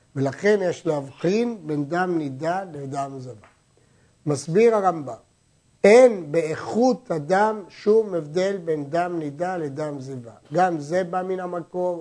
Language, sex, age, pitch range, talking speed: Hebrew, male, 60-79, 150-195 Hz, 125 wpm